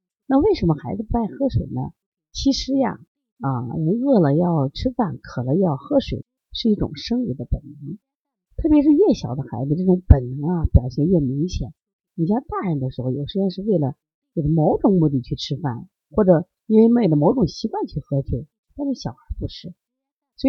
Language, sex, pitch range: Chinese, female, 140-220 Hz